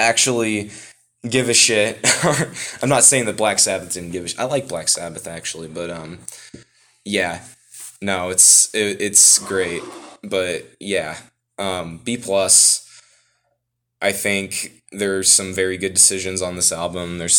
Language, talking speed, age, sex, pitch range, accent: English, 145 wpm, 20-39, male, 90-110 Hz, American